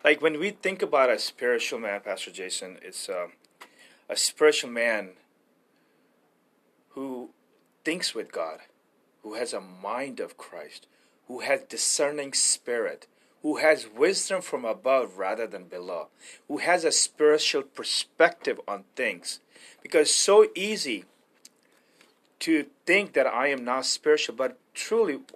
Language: English